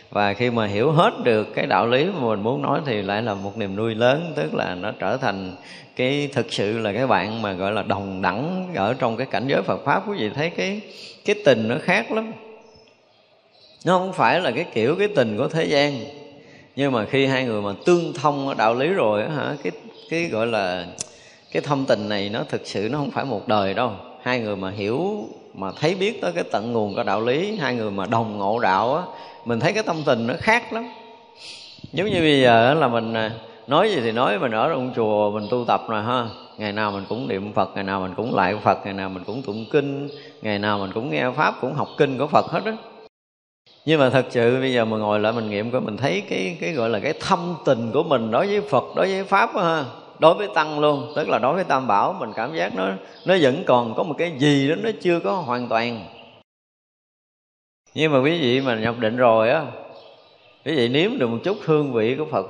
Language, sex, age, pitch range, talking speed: Vietnamese, male, 20-39, 105-155 Hz, 240 wpm